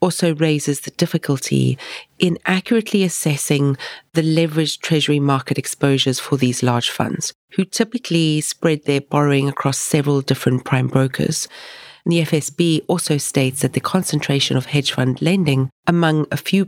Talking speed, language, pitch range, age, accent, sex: 145 wpm, English, 140-170 Hz, 40-59, British, female